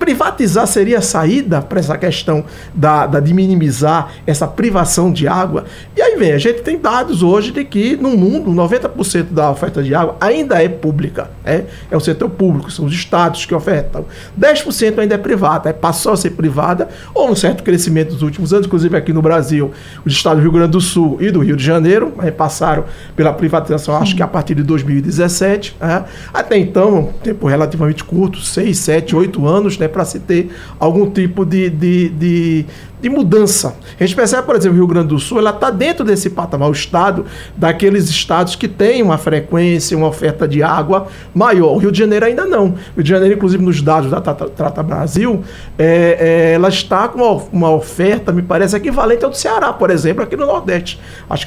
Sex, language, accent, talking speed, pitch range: male, Portuguese, Brazilian, 200 wpm, 160-195 Hz